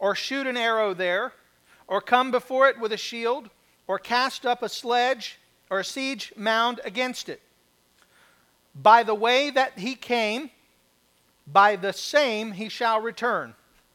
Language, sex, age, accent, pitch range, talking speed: English, male, 40-59, American, 185-250 Hz, 150 wpm